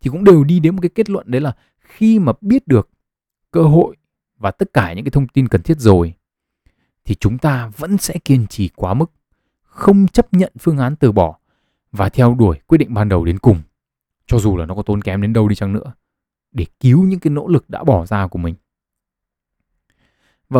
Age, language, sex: 20-39, Vietnamese, male